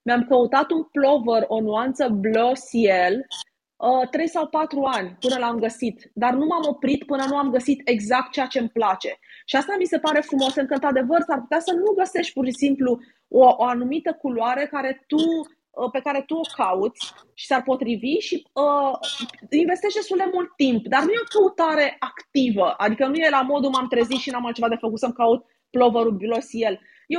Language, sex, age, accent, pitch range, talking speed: Romanian, female, 20-39, native, 240-305 Hz, 195 wpm